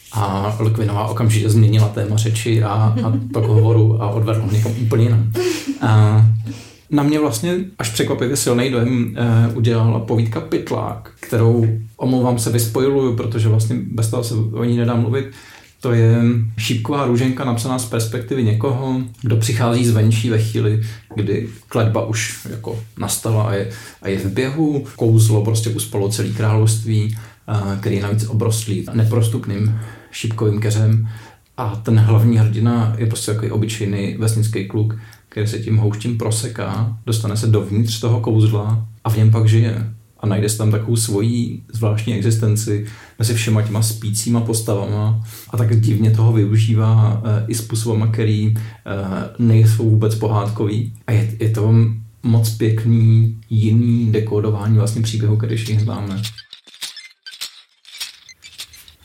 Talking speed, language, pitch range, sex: 145 wpm, Czech, 110-115 Hz, male